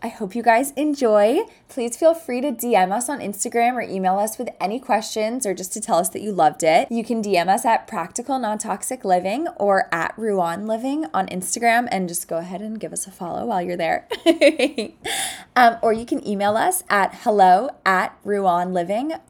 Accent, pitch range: American, 190-255 Hz